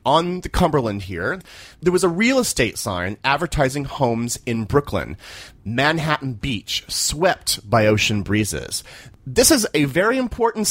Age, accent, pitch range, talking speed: 30-49, American, 110-170 Hz, 140 wpm